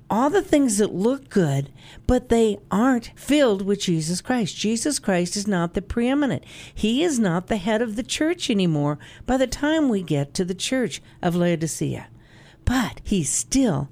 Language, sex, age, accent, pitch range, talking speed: English, female, 50-69, American, 160-250 Hz, 175 wpm